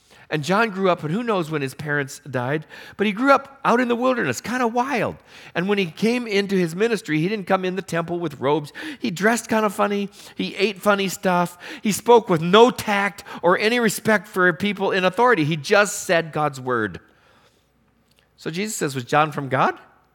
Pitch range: 160-215 Hz